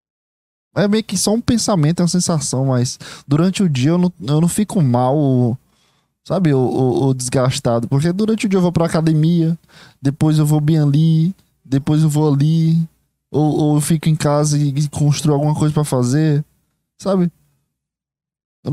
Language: Portuguese